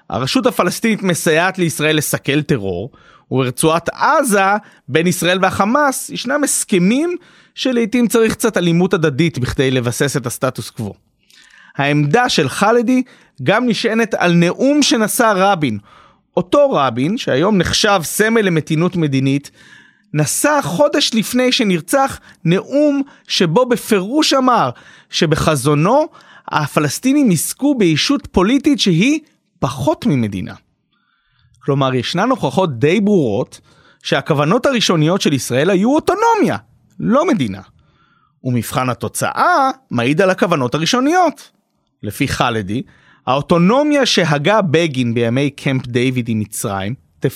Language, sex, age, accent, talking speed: Hebrew, male, 30-49, native, 110 wpm